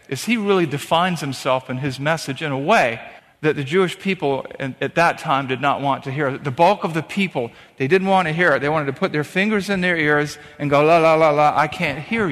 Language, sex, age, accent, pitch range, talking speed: English, male, 50-69, American, 145-180 Hz, 255 wpm